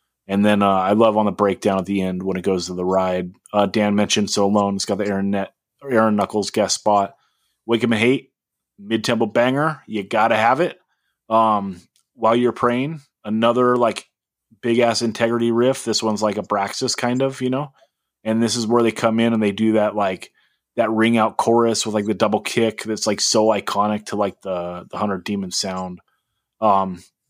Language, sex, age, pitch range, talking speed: English, male, 30-49, 100-120 Hz, 205 wpm